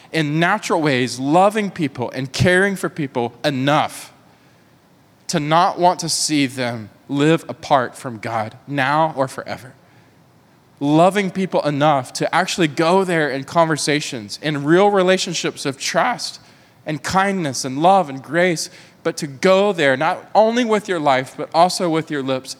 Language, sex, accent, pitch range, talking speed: English, male, American, 125-165 Hz, 150 wpm